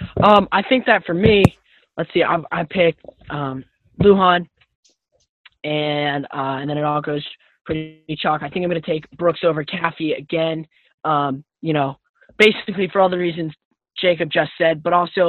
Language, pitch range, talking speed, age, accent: English, 145-175 Hz, 175 wpm, 10-29, American